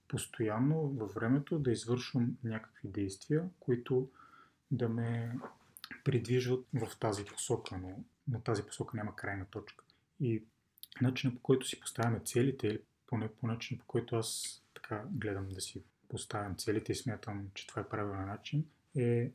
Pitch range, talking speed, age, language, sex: 110-135 Hz, 150 wpm, 30-49, Bulgarian, male